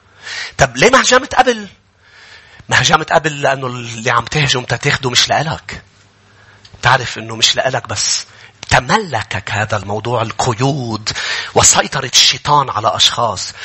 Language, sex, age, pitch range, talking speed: English, male, 30-49, 115-145 Hz, 115 wpm